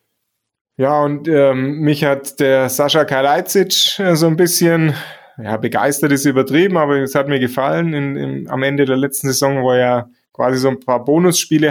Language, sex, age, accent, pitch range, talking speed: German, male, 20-39, German, 120-145 Hz, 175 wpm